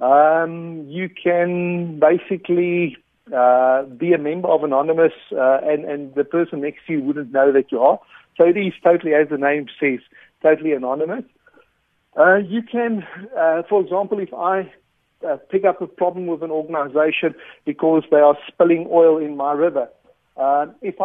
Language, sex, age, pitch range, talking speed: English, male, 50-69, 150-190 Hz, 170 wpm